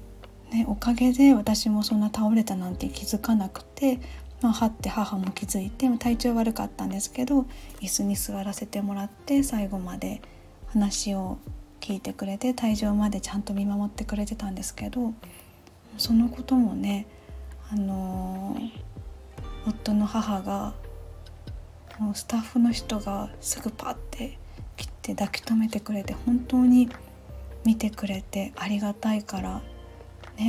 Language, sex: Japanese, female